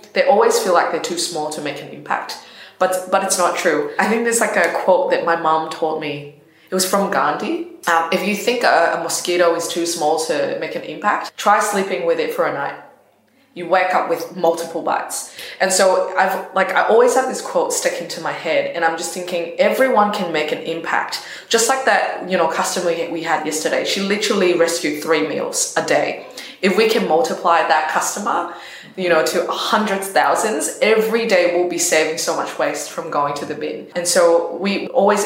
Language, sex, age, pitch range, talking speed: English, female, 20-39, 160-210 Hz, 215 wpm